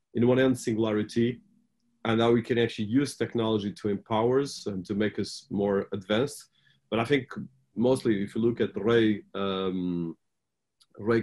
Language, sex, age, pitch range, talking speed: English, male, 30-49, 100-115 Hz, 165 wpm